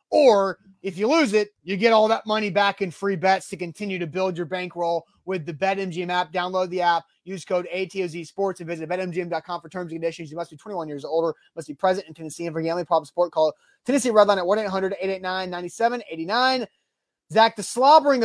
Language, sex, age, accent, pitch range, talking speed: English, male, 30-49, American, 170-210 Hz, 200 wpm